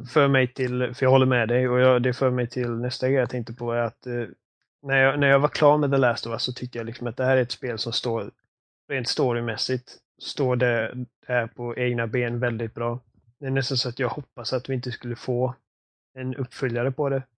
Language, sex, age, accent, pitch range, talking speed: Swedish, male, 20-39, native, 120-135 Hz, 245 wpm